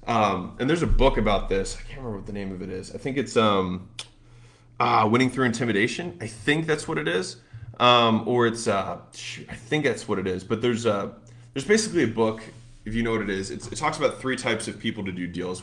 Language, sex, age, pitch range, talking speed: English, male, 20-39, 110-130 Hz, 235 wpm